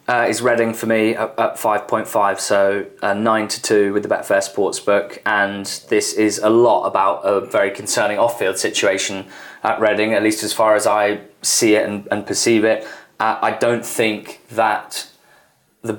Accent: British